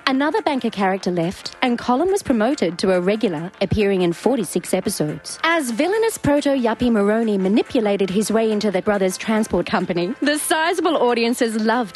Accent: Australian